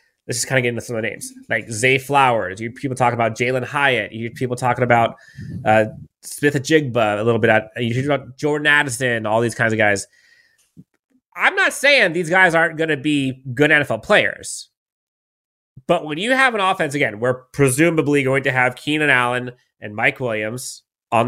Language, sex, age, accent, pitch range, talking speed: English, male, 30-49, American, 125-170 Hz, 195 wpm